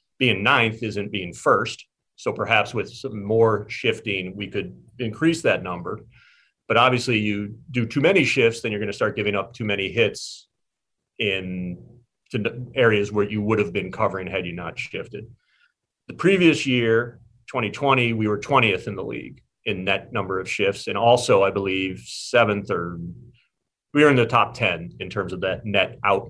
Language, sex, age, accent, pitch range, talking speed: English, male, 40-59, American, 105-125 Hz, 180 wpm